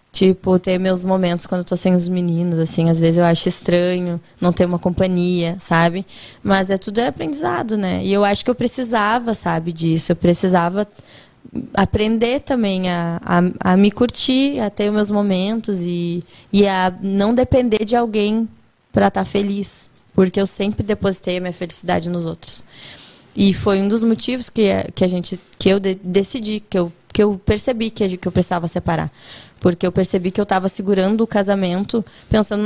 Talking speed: 185 wpm